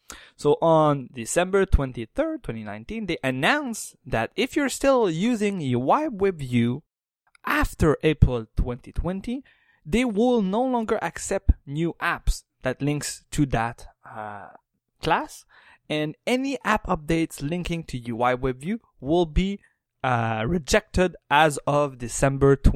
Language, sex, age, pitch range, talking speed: English, male, 20-39, 120-180 Hz, 120 wpm